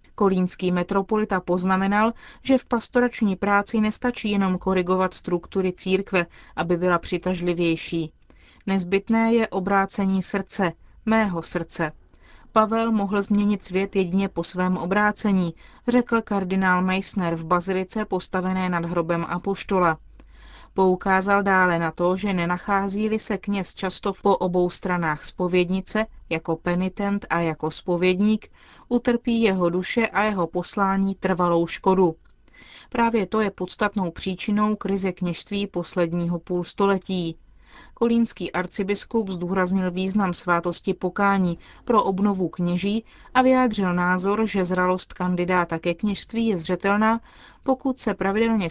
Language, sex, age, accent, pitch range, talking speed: Czech, female, 30-49, native, 180-210 Hz, 115 wpm